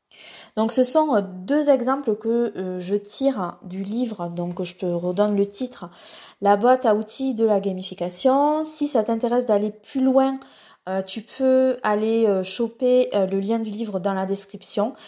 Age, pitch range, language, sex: 20-39, 195-250 Hz, French, female